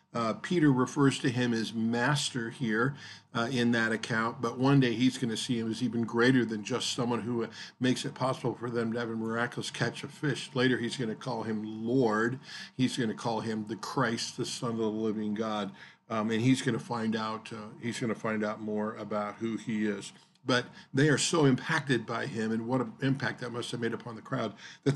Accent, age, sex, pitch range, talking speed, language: American, 50-69, male, 115-135 Hz, 235 wpm, English